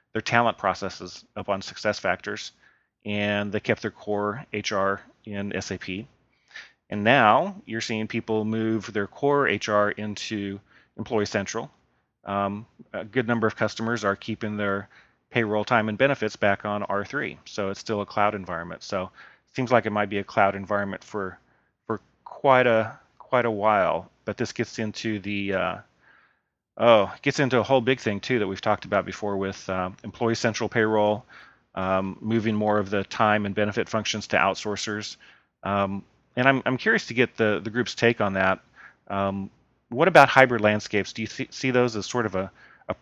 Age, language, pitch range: 30-49, English, 100-115 Hz